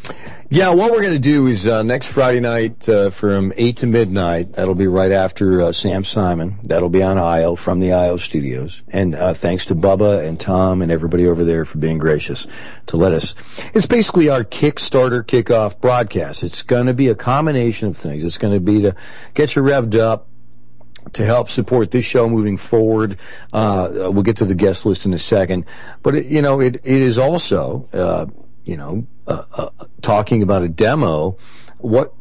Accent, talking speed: American, 195 wpm